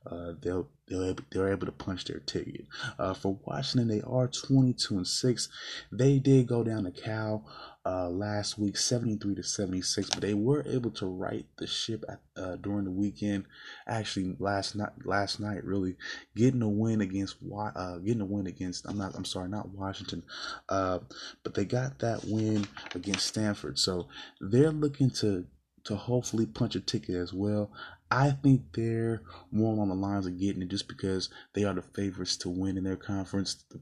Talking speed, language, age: 185 wpm, English, 20-39